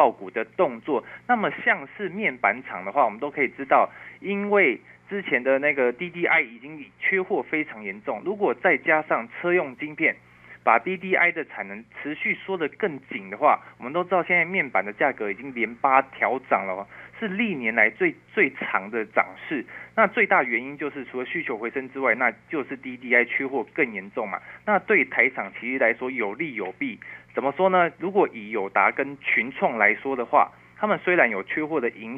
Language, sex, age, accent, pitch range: Chinese, male, 20-39, native, 120-180 Hz